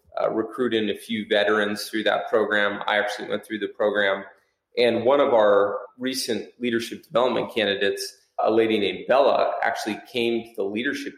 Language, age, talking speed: English, 30-49, 165 wpm